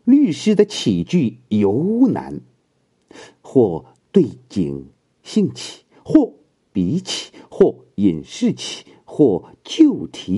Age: 50-69